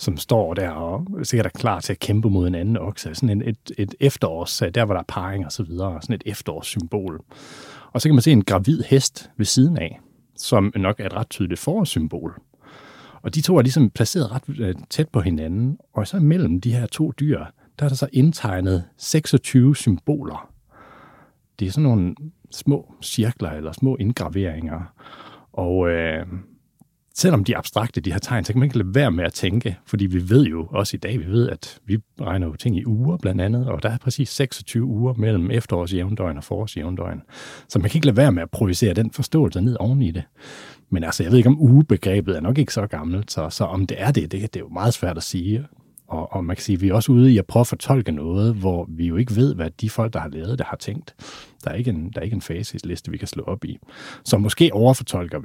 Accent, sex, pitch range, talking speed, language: native, male, 95-130 Hz, 230 wpm, Danish